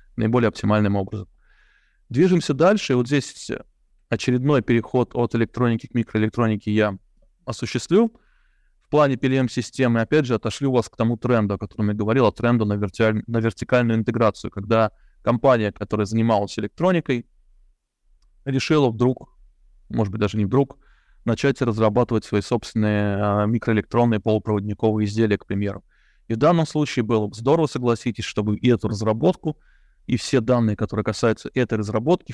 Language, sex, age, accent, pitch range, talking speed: Russian, male, 20-39, native, 105-125 Hz, 140 wpm